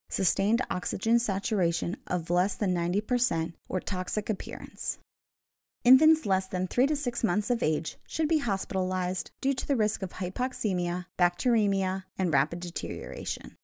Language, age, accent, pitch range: English, 30-49, American, 180-240 Hz